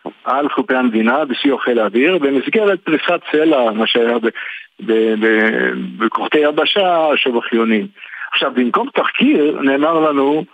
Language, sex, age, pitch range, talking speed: Hebrew, male, 50-69, 125-165 Hz, 110 wpm